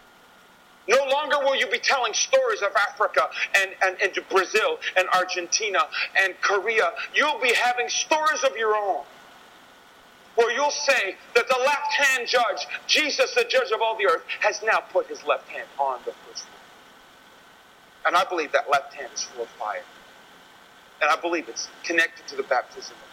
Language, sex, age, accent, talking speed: English, male, 40-59, American, 175 wpm